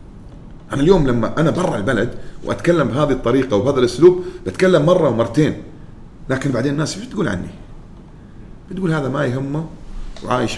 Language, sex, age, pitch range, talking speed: Arabic, male, 40-59, 105-165 Hz, 140 wpm